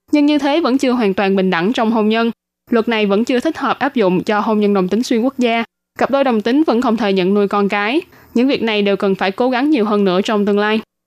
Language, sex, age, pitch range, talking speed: Vietnamese, female, 20-39, 205-255 Hz, 285 wpm